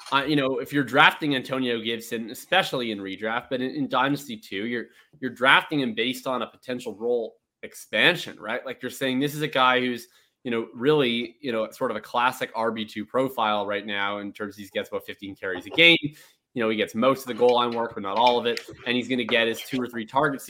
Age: 20-39